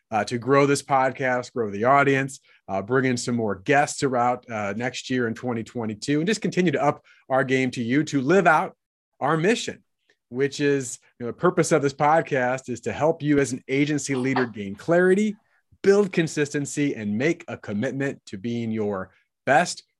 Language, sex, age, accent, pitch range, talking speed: English, male, 30-49, American, 125-150 Hz, 185 wpm